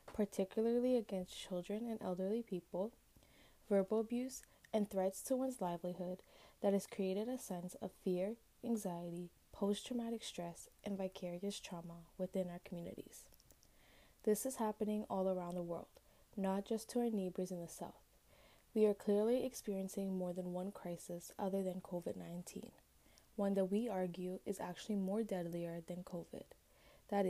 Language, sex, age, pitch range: English, female, 10-29, 180-215 Hz